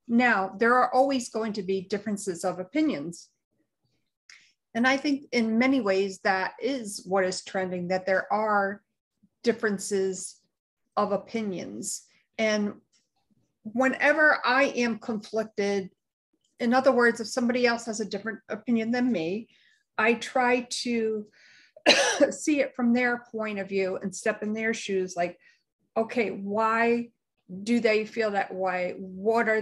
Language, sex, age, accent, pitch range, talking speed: English, female, 50-69, American, 195-240 Hz, 140 wpm